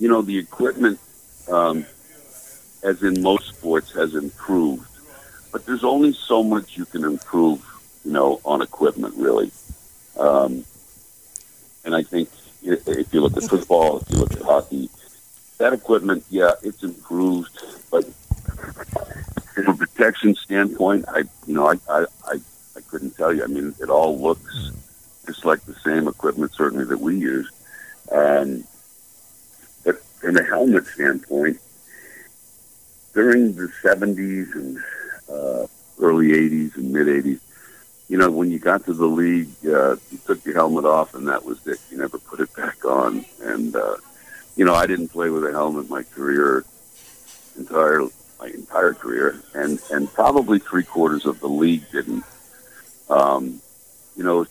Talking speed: 155 wpm